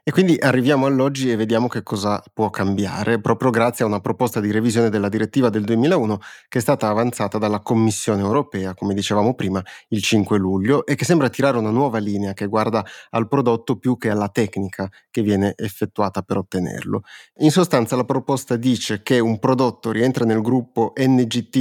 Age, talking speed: 30-49, 185 wpm